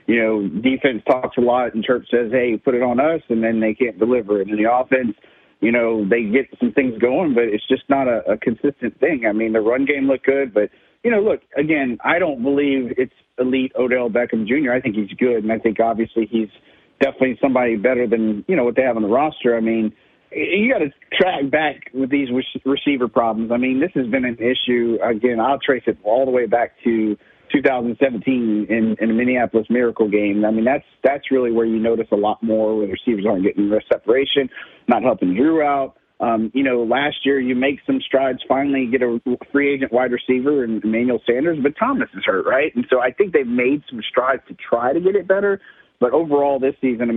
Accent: American